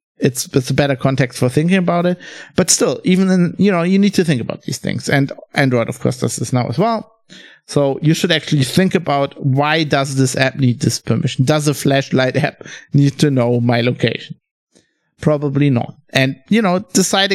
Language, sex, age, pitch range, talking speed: English, male, 50-69, 140-185 Hz, 205 wpm